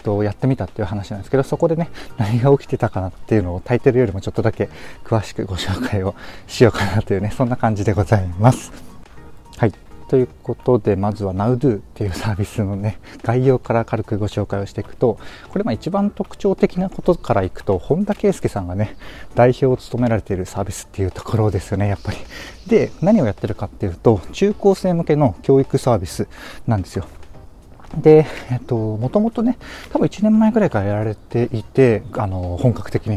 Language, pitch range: Japanese, 100-135 Hz